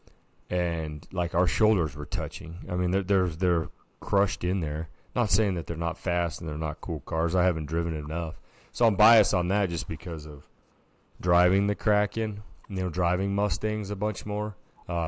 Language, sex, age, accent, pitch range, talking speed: English, male, 30-49, American, 80-95 Hz, 190 wpm